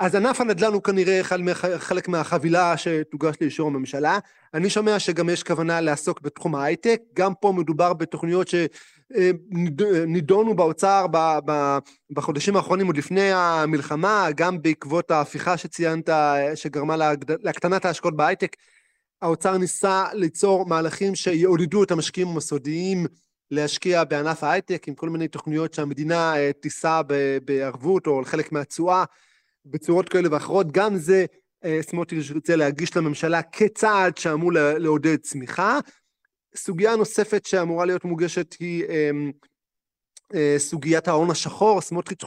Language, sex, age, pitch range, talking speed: Hebrew, male, 20-39, 150-180 Hz, 115 wpm